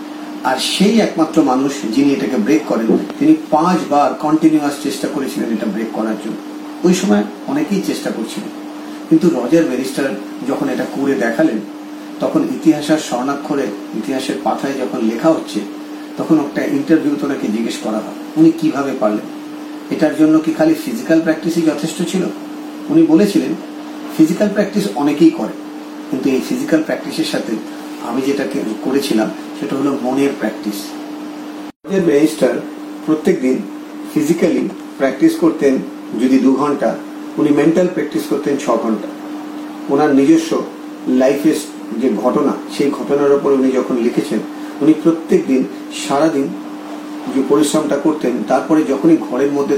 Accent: native